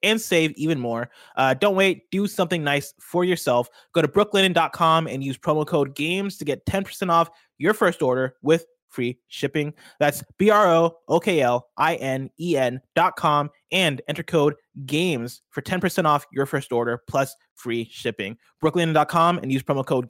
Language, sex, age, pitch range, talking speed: English, male, 20-39, 130-175 Hz, 150 wpm